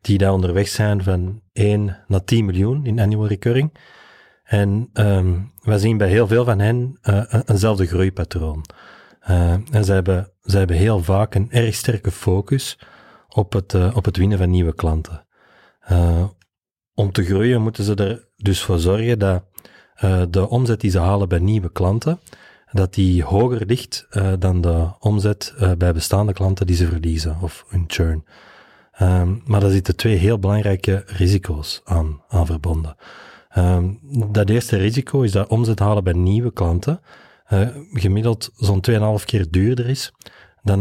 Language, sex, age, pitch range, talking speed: Dutch, male, 30-49, 90-110 Hz, 165 wpm